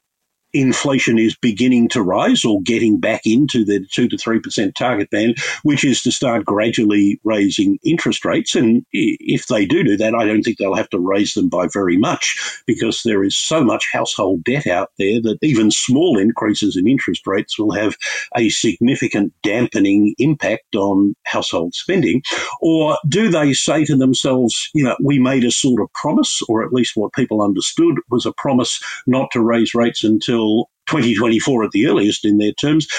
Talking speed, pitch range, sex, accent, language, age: 180 wpm, 115-130 Hz, male, Australian, English, 50-69